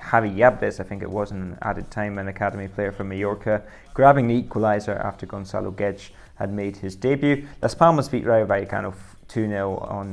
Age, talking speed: 20-39, 195 wpm